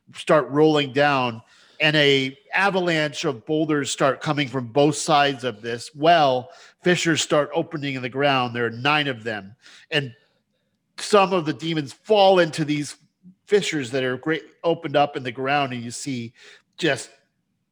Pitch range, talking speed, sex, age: 125-160 Hz, 165 wpm, male, 40-59